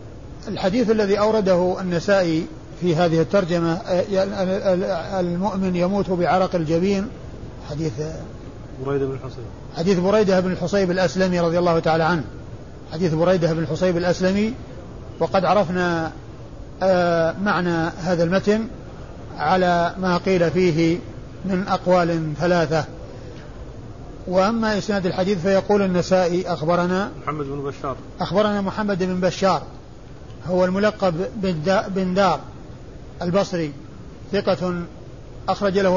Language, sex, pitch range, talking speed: Arabic, male, 155-190 Hz, 105 wpm